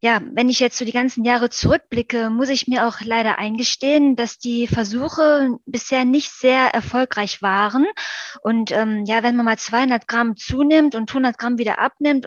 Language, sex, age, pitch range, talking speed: German, female, 20-39, 220-255 Hz, 180 wpm